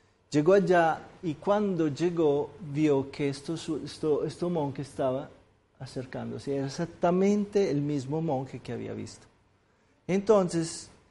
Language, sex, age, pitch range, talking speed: Spanish, male, 40-59, 125-175 Hz, 120 wpm